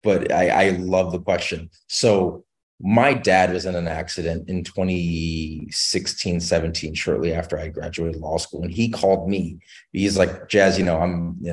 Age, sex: 30-49, male